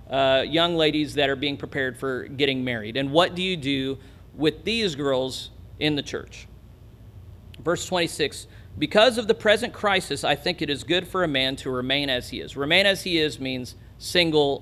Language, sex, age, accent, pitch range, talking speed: English, male, 40-59, American, 120-160 Hz, 195 wpm